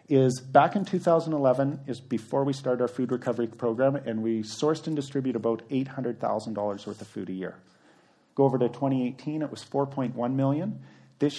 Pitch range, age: 115-140 Hz, 40-59